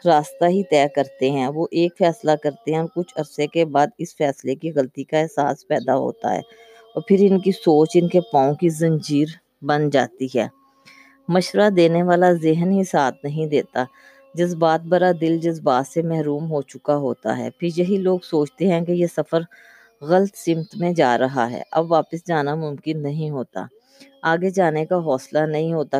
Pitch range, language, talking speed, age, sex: 145-175 Hz, Urdu, 185 wpm, 20-39, female